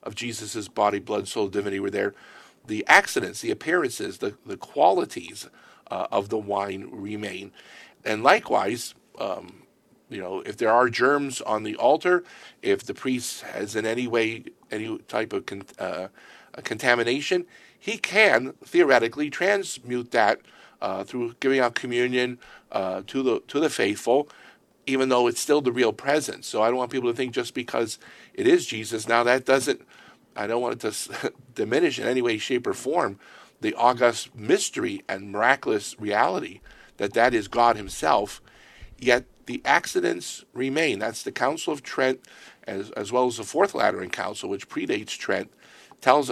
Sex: male